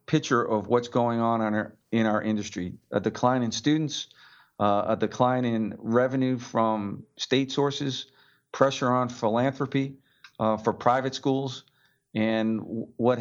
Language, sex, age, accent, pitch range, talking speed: English, male, 50-69, American, 110-130 Hz, 135 wpm